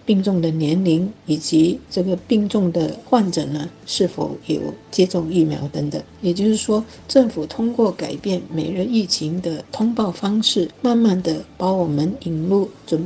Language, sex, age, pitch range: Chinese, female, 50-69, 165-210 Hz